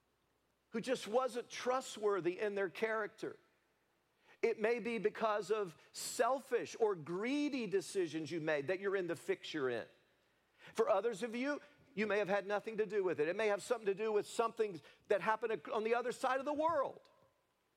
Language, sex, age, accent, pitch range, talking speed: English, male, 50-69, American, 160-235 Hz, 185 wpm